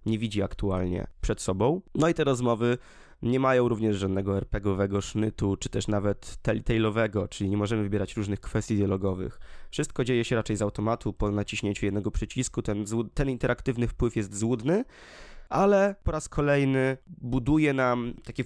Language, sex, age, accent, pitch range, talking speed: Polish, male, 20-39, native, 105-125 Hz, 160 wpm